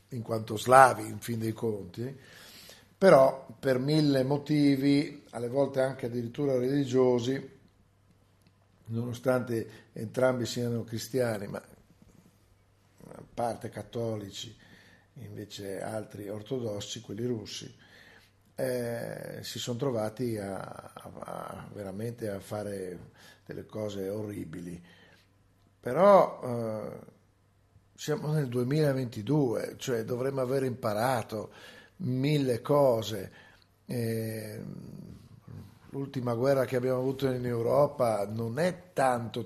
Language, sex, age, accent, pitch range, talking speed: Italian, male, 50-69, native, 105-135 Hz, 95 wpm